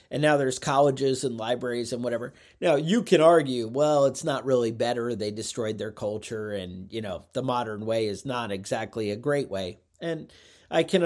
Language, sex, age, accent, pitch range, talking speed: English, male, 40-59, American, 115-150 Hz, 195 wpm